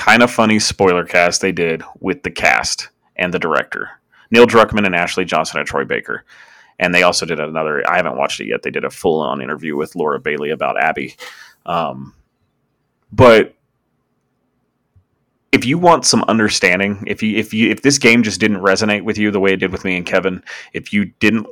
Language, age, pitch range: English, 30-49, 95-120 Hz